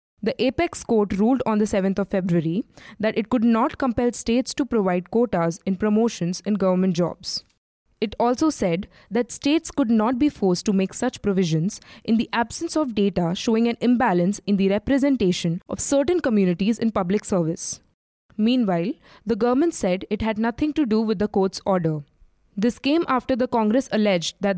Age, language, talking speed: 20-39, English, 180 wpm